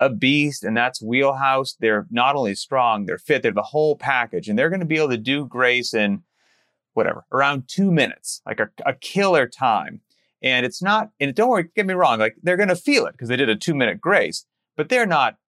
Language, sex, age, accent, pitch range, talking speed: English, male, 30-49, American, 115-160 Hz, 220 wpm